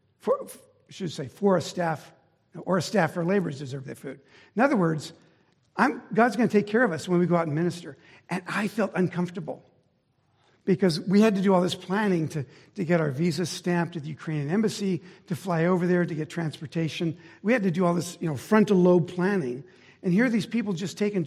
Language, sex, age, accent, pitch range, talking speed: English, male, 60-79, American, 160-190 Hz, 225 wpm